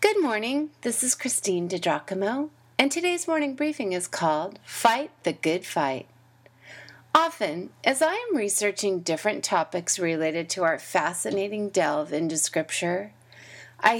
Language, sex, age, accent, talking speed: English, female, 30-49, American, 135 wpm